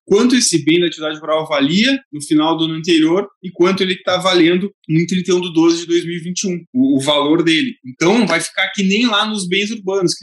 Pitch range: 165-205 Hz